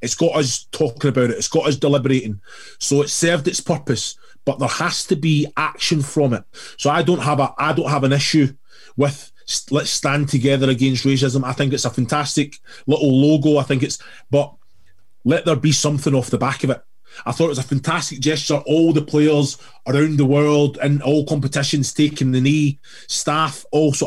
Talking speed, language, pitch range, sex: 190 wpm, English, 125-150 Hz, male